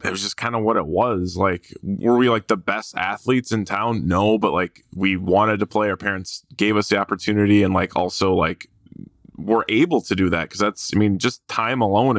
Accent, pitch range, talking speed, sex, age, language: American, 95-110 Hz, 225 wpm, male, 20-39, English